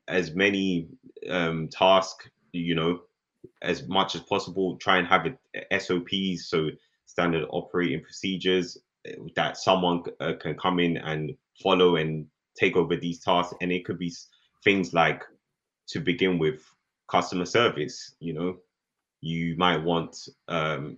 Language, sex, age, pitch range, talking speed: English, male, 10-29, 80-90 Hz, 140 wpm